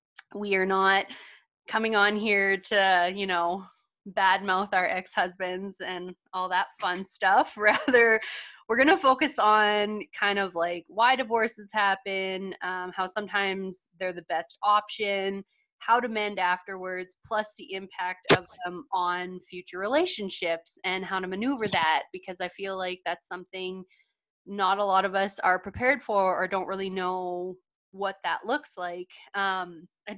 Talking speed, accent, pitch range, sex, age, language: 155 wpm, American, 185-220 Hz, female, 20-39, English